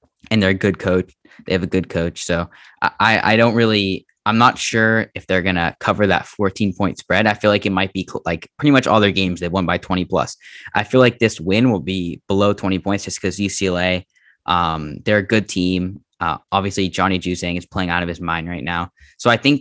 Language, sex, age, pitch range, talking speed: English, male, 10-29, 90-100 Hz, 240 wpm